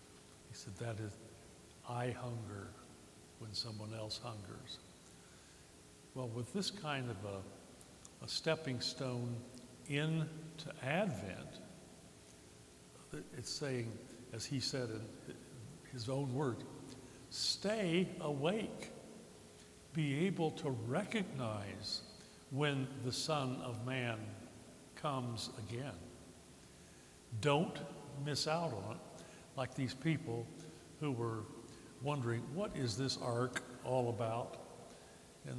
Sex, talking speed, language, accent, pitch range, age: male, 105 wpm, English, American, 110-145 Hz, 60-79